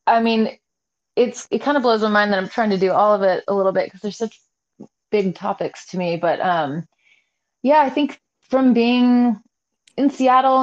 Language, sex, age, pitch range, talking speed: English, female, 30-49, 165-230 Hz, 205 wpm